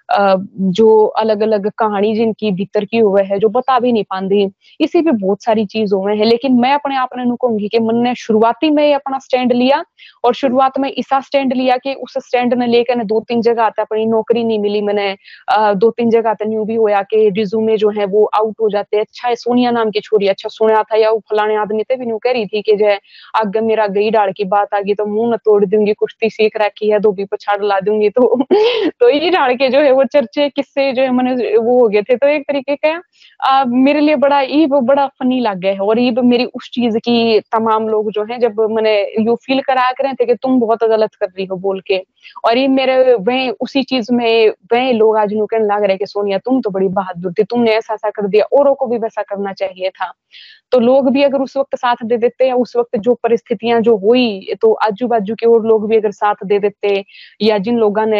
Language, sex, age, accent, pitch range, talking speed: Hindi, female, 20-39, native, 210-255 Hz, 185 wpm